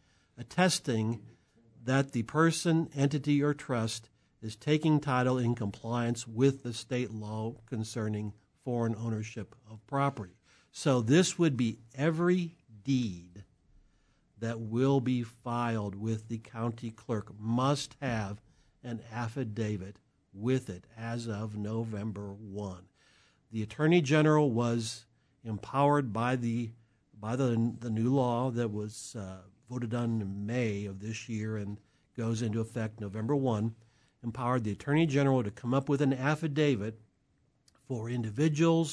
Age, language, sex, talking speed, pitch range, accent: 60-79, English, male, 130 wpm, 110-135 Hz, American